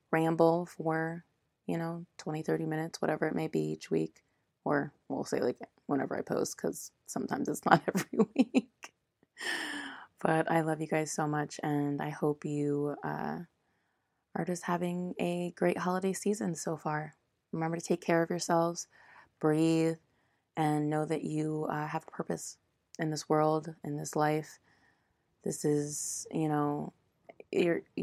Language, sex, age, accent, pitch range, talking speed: English, female, 20-39, American, 150-170 Hz, 155 wpm